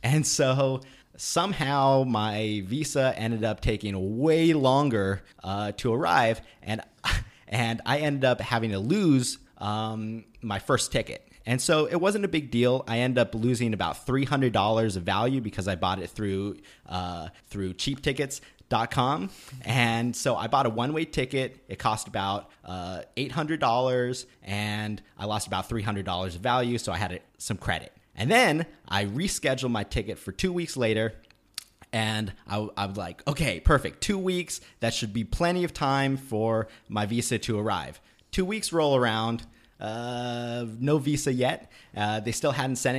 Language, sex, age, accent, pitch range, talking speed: English, male, 30-49, American, 105-135 Hz, 160 wpm